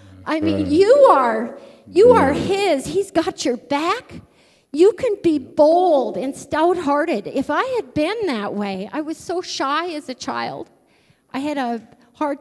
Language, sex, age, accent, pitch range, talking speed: English, female, 40-59, American, 250-340 Hz, 165 wpm